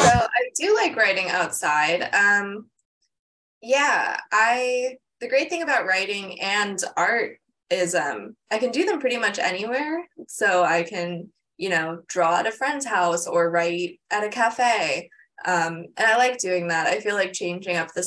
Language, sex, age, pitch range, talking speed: English, female, 20-39, 175-245 Hz, 175 wpm